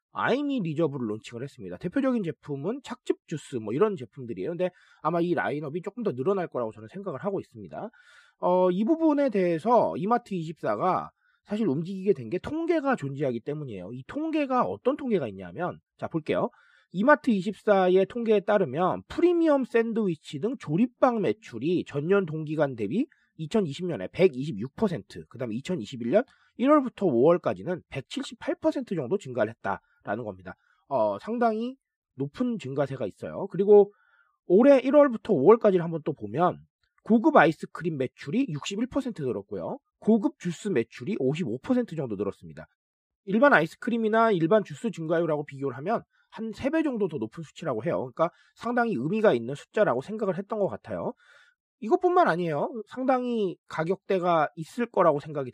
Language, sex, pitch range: Korean, male, 155-240 Hz